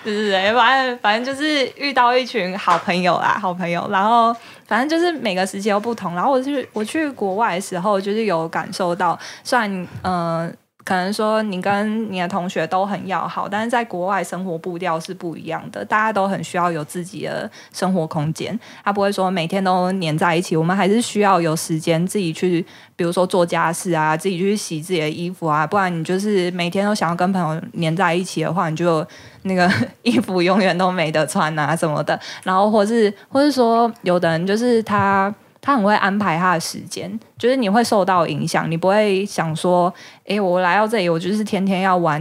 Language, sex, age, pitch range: Chinese, female, 20-39, 170-210 Hz